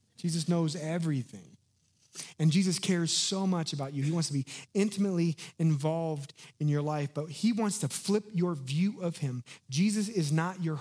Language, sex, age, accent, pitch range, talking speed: English, male, 30-49, American, 125-165 Hz, 180 wpm